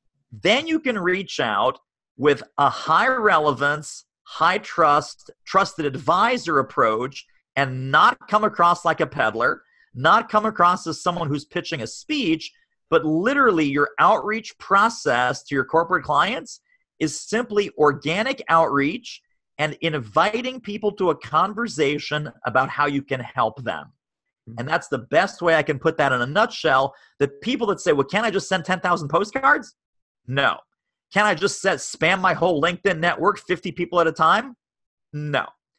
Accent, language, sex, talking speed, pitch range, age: American, English, male, 155 wpm, 150-215 Hz, 40-59